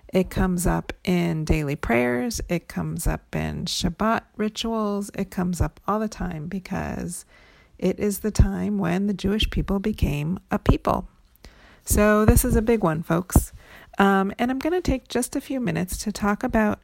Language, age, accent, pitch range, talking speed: English, 40-59, American, 180-225 Hz, 180 wpm